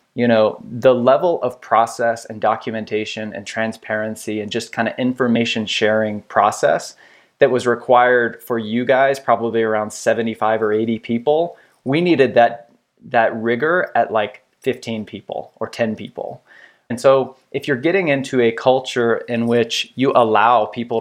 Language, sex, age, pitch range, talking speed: English, male, 20-39, 110-130 Hz, 155 wpm